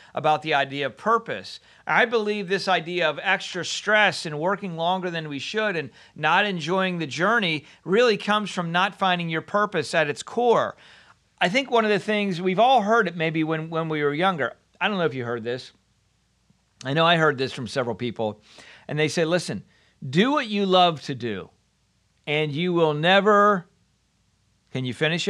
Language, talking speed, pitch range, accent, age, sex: English, 190 wpm, 140-200 Hz, American, 40-59, male